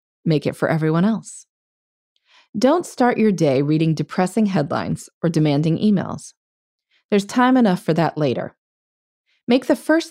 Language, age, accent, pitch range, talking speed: English, 30-49, American, 155-245 Hz, 140 wpm